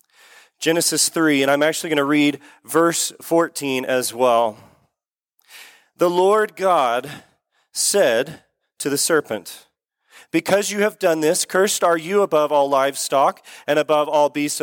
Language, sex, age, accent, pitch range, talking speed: English, male, 30-49, American, 145-190 Hz, 140 wpm